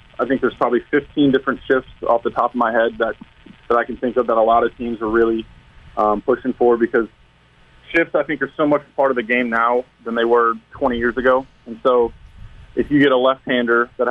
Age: 20-39